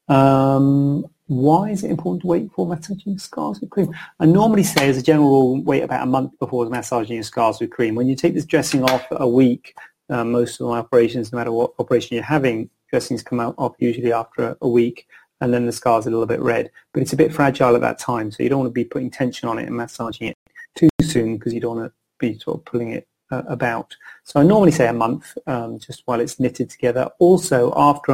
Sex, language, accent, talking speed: male, English, British, 245 wpm